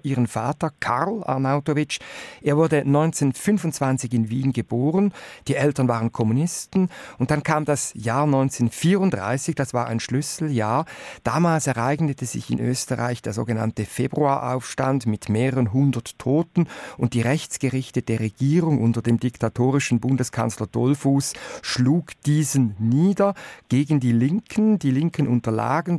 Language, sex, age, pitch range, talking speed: German, male, 50-69, 120-150 Hz, 125 wpm